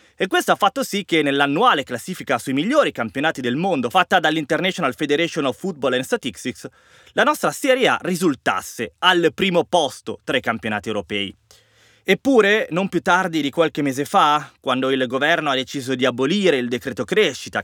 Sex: male